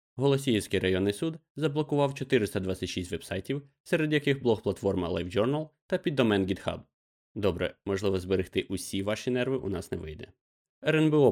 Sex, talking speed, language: male, 125 wpm, Ukrainian